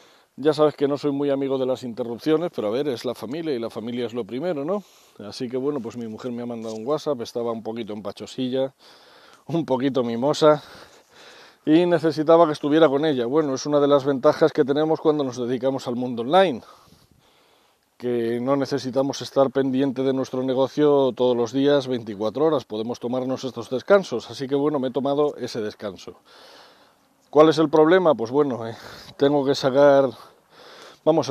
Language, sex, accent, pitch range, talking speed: Spanish, male, Spanish, 120-150 Hz, 185 wpm